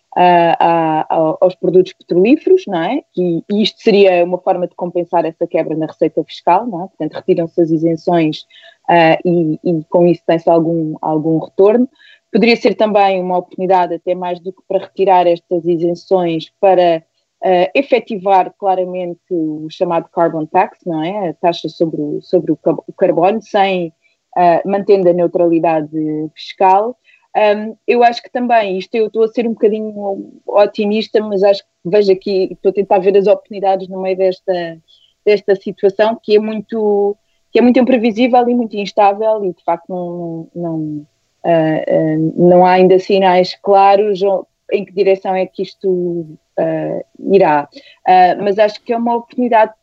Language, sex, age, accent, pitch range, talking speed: Portuguese, female, 20-39, Brazilian, 170-205 Hz, 165 wpm